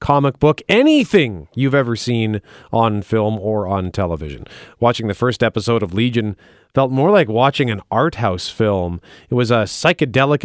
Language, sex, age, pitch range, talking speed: English, male, 40-59, 105-140 Hz, 165 wpm